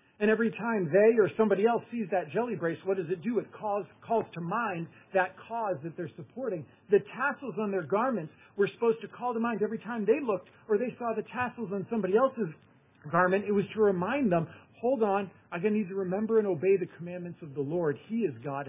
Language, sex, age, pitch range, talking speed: English, male, 50-69, 150-215 Hz, 230 wpm